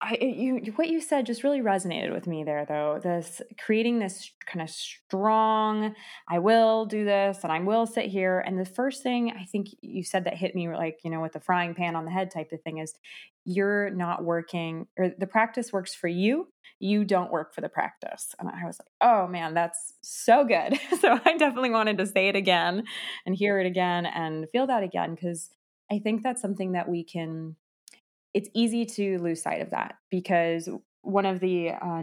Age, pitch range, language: 20-39, 170-220 Hz, English